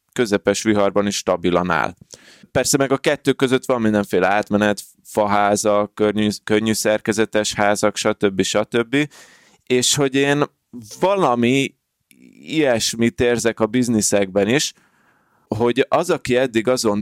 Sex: male